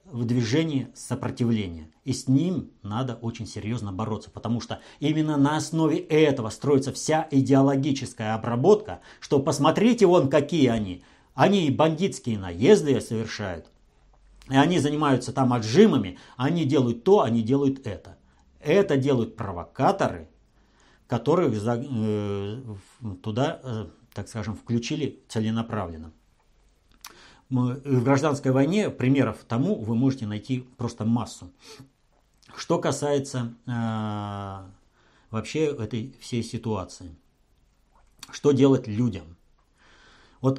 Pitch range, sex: 110-140 Hz, male